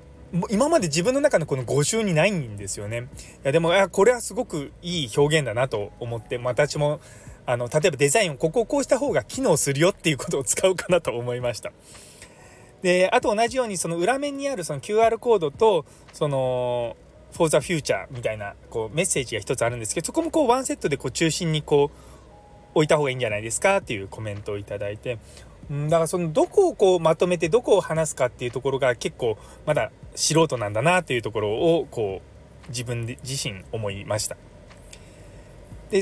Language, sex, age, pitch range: Japanese, male, 20-39, 125-205 Hz